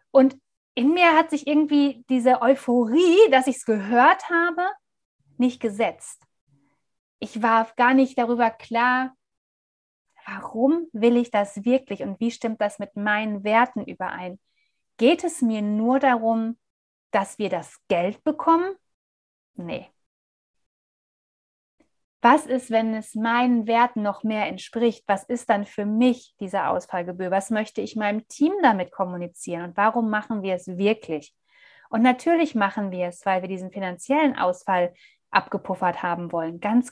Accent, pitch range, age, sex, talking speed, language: German, 205-245 Hz, 30-49, female, 145 wpm, German